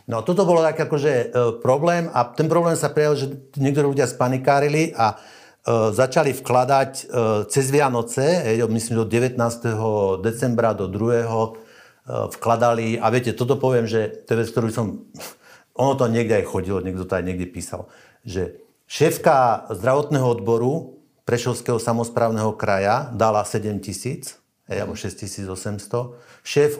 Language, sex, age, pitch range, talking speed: Slovak, male, 50-69, 110-130 Hz, 145 wpm